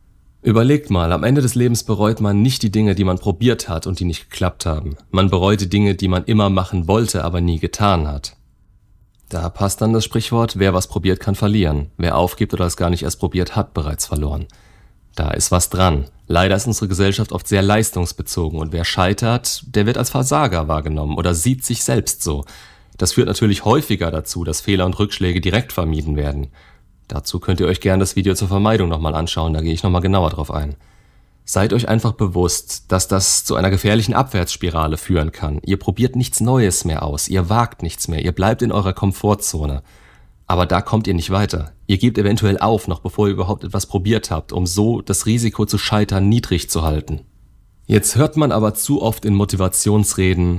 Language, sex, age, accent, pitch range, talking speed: German, male, 30-49, German, 85-105 Hz, 200 wpm